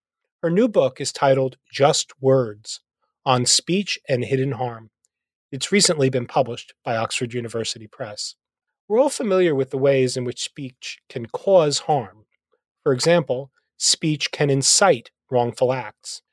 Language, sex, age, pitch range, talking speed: English, male, 30-49, 125-175 Hz, 145 wpm